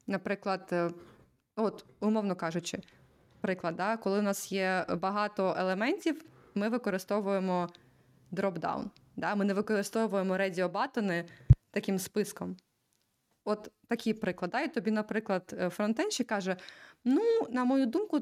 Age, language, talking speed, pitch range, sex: 20-39, Ukrainian, 110 wpm, 190-225 Hz, female